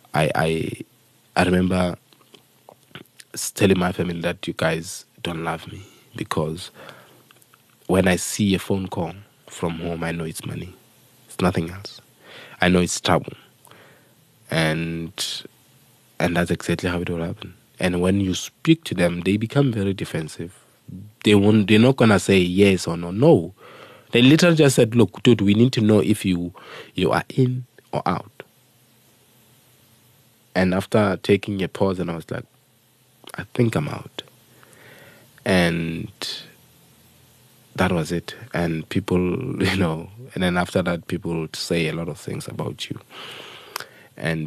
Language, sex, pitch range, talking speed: English, male, 85-105 Hz, 150 wpm